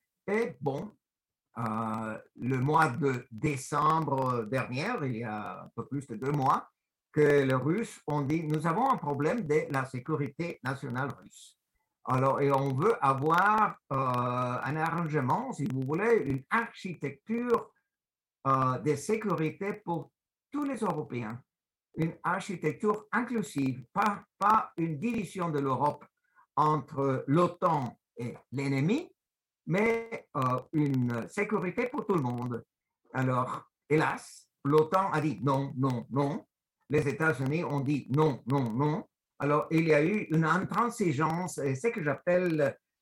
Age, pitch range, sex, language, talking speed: 60-79, 135-190 Hz, male, French, 140 wpm